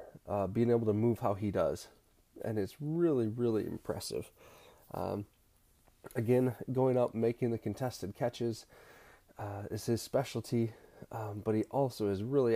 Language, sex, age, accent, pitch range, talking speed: English, male, 20-39, American, 100-120 Hz, 150 wpm